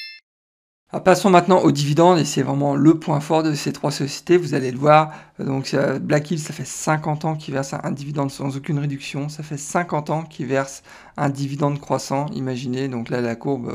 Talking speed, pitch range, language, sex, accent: 200 wpm, 135-155 Hz, French, male, French